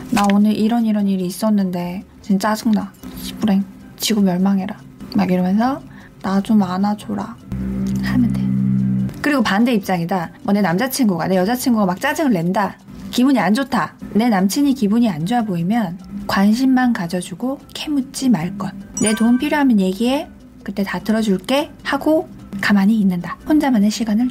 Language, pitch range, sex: Korean, 190-240 Hz, female